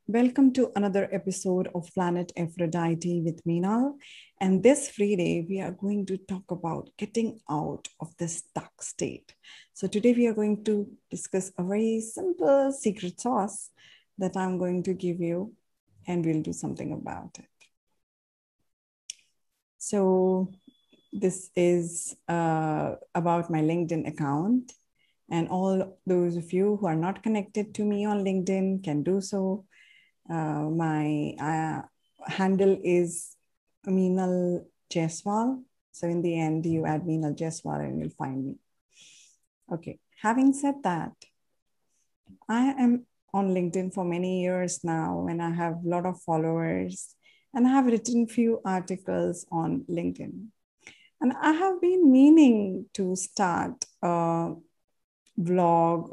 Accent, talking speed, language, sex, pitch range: Indian, 135 wpm, English, female, 170-210 Hz